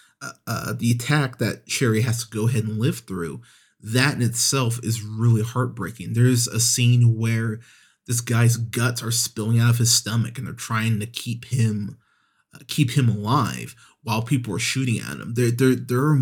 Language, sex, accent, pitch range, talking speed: English, male, American, 110-120 Hz, 185 wpm